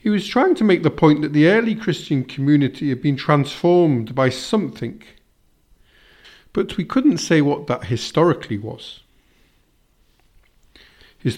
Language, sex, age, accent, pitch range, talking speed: English, male, 50-69, British, 120-180 Hz, 135 wpm